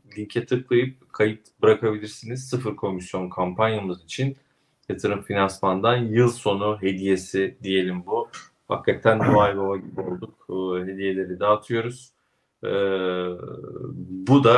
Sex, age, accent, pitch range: male, 40-59, native, 95-110 Hz